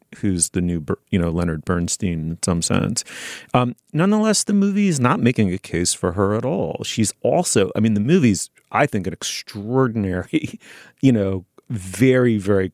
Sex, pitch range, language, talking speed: male, 90-120 Hz, English, 175 wpm